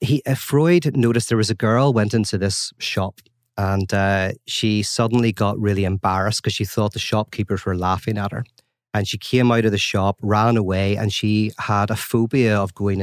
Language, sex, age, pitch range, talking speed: English, male, 30-49, 100-120 Hz, 205 wpm